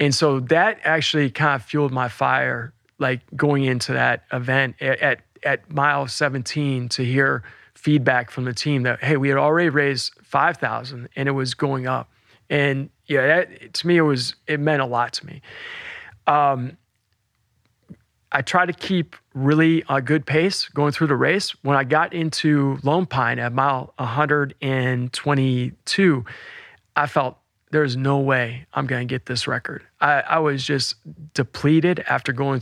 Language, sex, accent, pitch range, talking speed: English, male, American, 130-150 Hz, 170 wpm